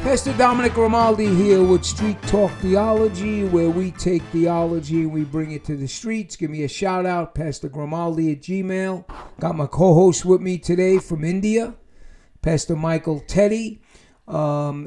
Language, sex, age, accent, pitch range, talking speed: English, male, 50-69, American, 155-190 Hz, 160 wpm